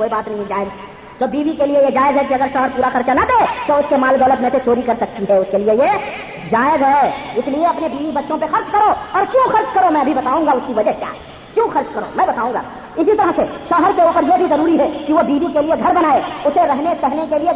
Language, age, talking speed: Urdu, 50-69, 290 wpm